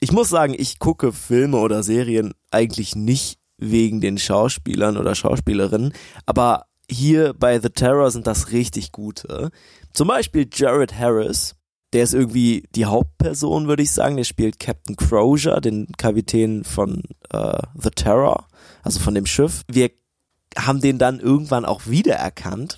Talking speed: 150 wpm